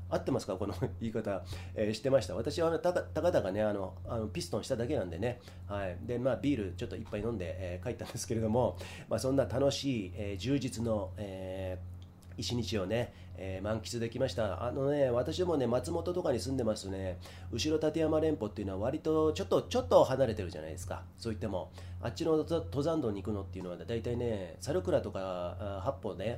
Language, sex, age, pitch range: Japanese, male, 30-49, 95-135 Hz